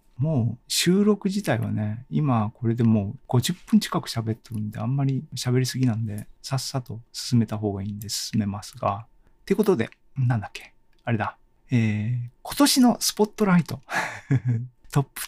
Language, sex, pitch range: Japanese, male, 105-140 Hz